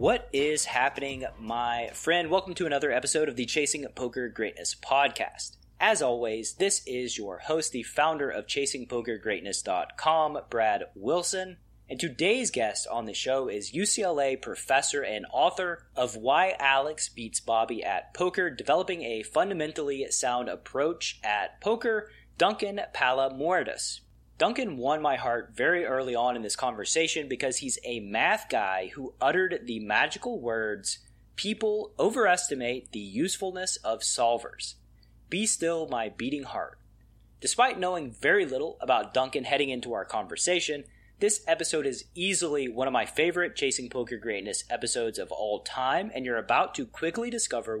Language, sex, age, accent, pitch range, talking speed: English, male, 30-49, American, 120-180 Hz, 145 wpm